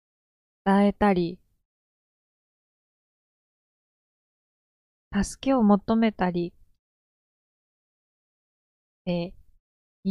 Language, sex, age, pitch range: Japanese, female, 20-39, 170-200 Hz